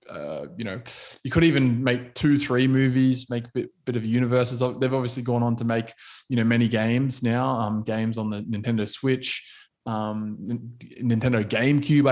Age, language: 20-39, English